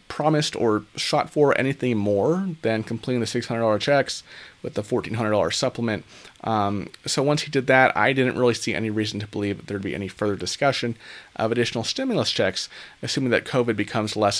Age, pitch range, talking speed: 30-49, 110-145 Hz, 180 wpm